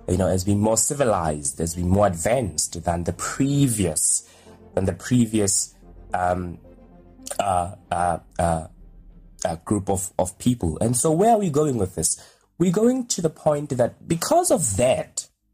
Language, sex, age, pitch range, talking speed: English, male, 20-39, 95-130 Hz, 160 wpm